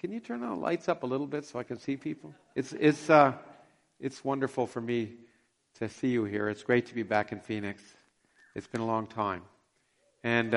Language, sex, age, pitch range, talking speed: English, male, 50-69, 115-155 Hz, 215 wpm